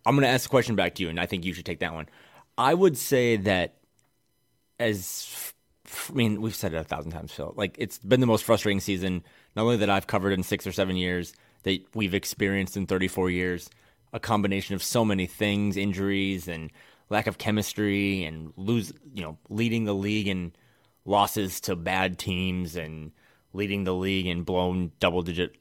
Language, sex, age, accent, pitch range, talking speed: English, male, 20-39, American, 90-110 Hz, 200 wpm